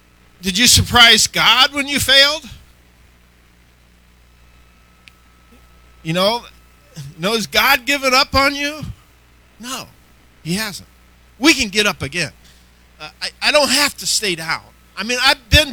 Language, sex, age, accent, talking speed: English, male, 50-69, American, 140 wpm